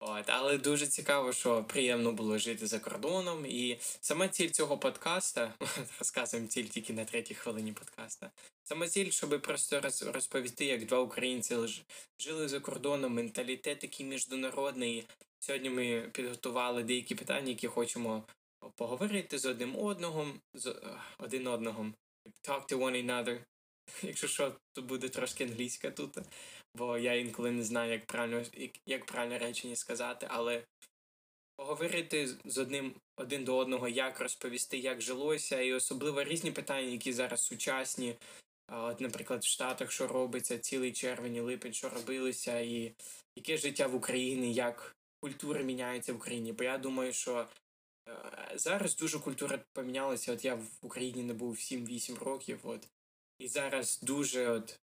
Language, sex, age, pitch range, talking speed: Ukrainian, male, 10-29, 120-140 Hz, 145 wpm